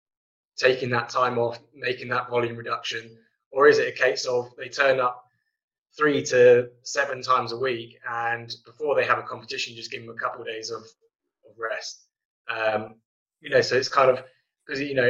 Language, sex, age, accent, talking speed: English, male, 20-39, British, 195 wpm